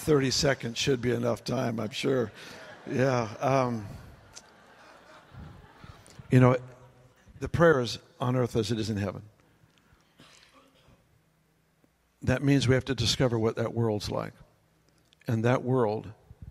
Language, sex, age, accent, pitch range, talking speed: English, male, 60-79, American, 110-130 Hz, 125 wpm